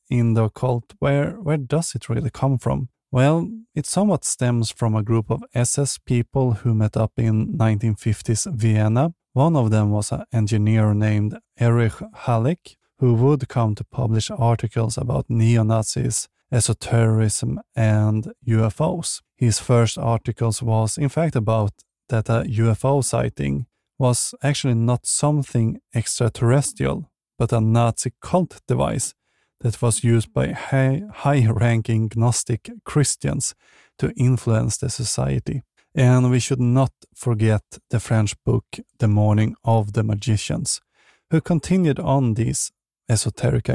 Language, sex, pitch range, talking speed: English, male, 110-130 Hz, 130 wpm